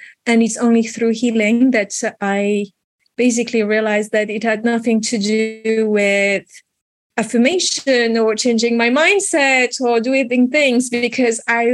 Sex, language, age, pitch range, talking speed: female, English, 30-49, 200-245 Hz, 135 wpm